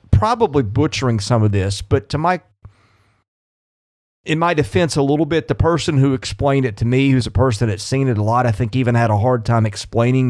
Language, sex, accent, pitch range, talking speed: English, male, American, 110-145 Hz, 220 wpm